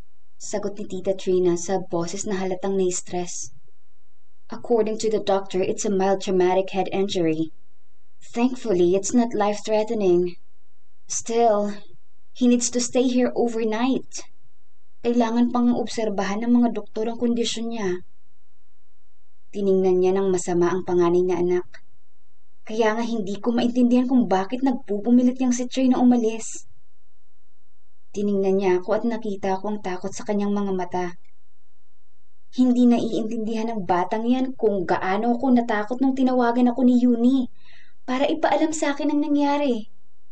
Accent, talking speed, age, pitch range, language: native, 135 wpm, 20-39, 195-250 Hz, Filipino